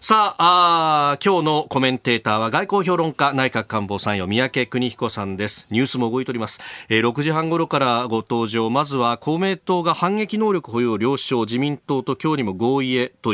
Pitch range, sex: 115-165 Hz, male